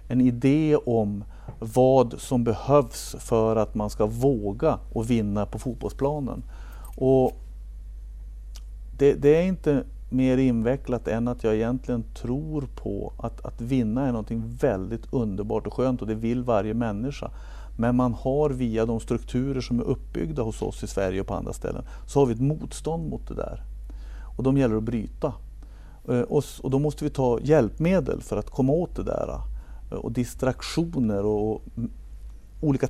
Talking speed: 160 wpm